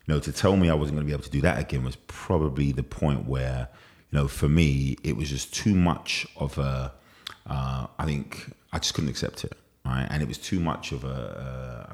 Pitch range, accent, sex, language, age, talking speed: 70-85 Hz, British, male, English, 30-49, 230 wpm